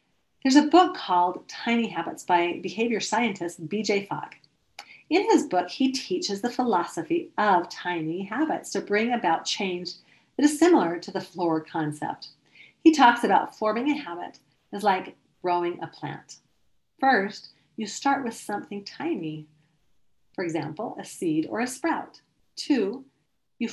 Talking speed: 145 wpm